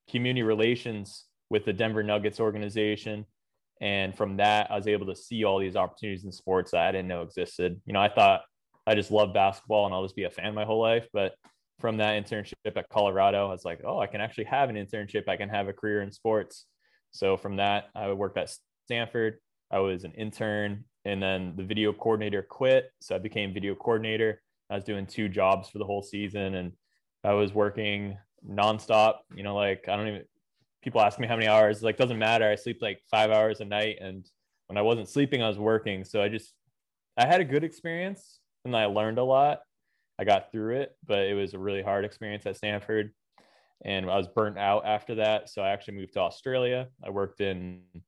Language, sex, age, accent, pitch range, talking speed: Italian, male, 20-39, American, 100-110 Hz, 215 wpm